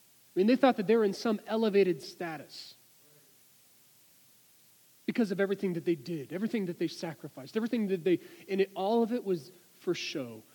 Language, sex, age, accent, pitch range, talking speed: English, male, 40-59, American, 155-215 Hz, 175 wpm